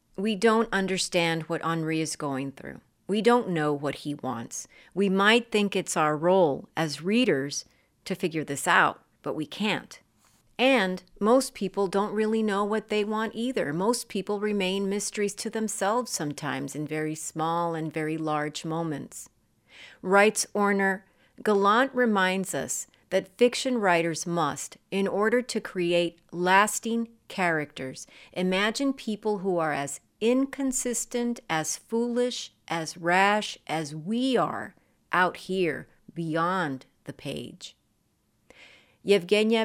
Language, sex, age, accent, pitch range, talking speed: English, female, 40-59, American, 155-205 Hz, 130 wpm